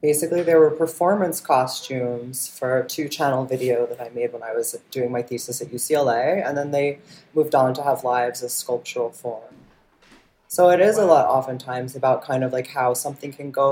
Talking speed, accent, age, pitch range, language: 195 wpm, American, 20-39, 125-150 Hz, English